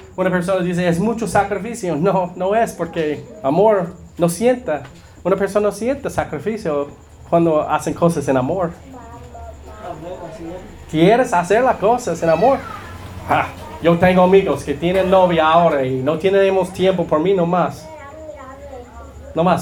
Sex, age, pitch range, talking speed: male, 30-49, 130-195 Hz, 140 wpm